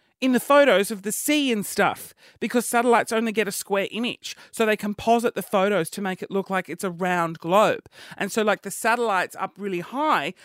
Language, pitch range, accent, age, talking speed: English, 180-240 Hz, Australian, 30-49, 215 wpm